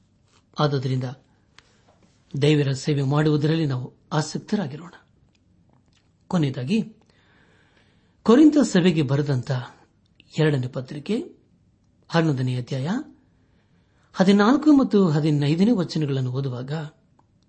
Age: 60-79